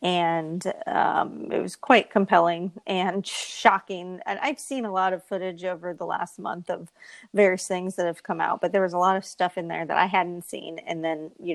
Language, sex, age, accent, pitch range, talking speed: English, female, 40-59, American, 180-230 Hz, 220 wpm